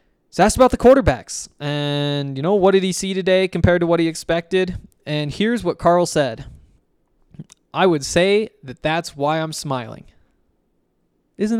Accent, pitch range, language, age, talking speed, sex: American, 140-180 Hz, English, 20-39, 160 wpm, male